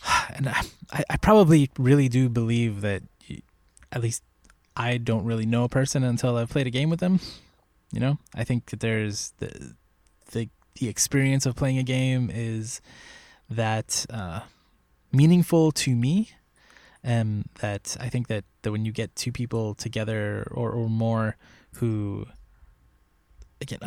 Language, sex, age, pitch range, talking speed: English, male, 20-39, 110-130 Hz, 155 wpm